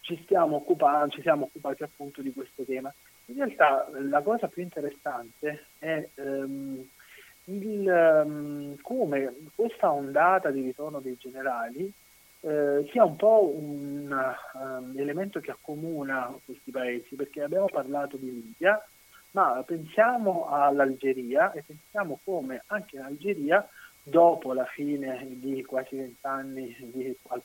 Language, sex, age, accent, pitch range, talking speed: Italian, male, 30-49, native, 130-150 Hz, 125 wpm